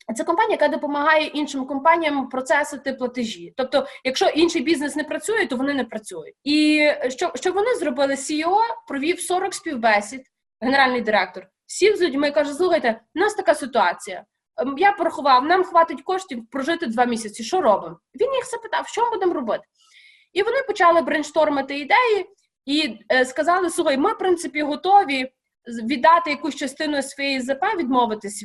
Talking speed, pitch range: 150 wpm, 240-335 Hz